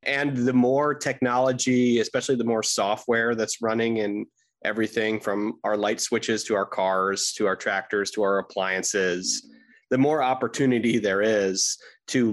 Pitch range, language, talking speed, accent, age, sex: 110-130 Hz, English, 150 wpm, American, 30-49, male